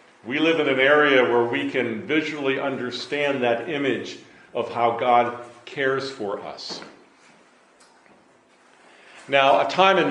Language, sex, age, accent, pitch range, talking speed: English, male, 50-69, American, 115-145 Hz, 130 wpm